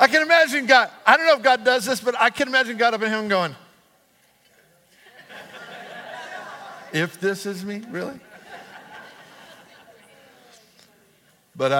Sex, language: male, English